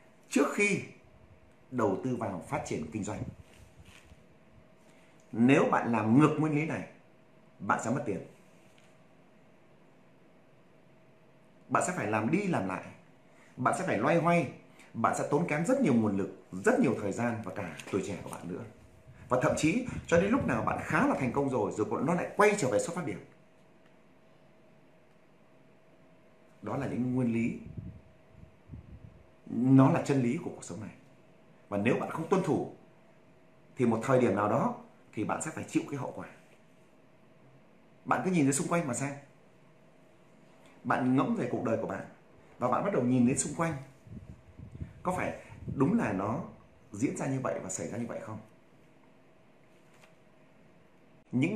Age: 30-49